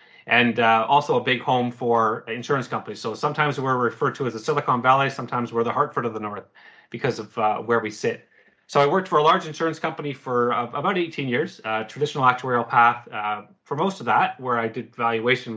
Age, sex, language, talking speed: 30-49, male, English, 220 wpm